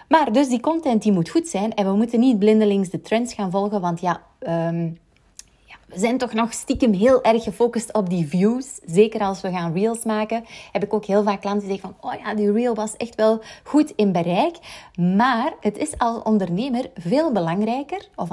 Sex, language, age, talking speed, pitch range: female, Dutch, 30-49, 205 wpm, 175-225 Hz